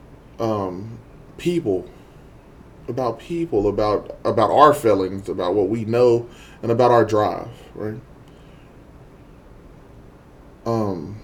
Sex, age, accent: male, 20-39, American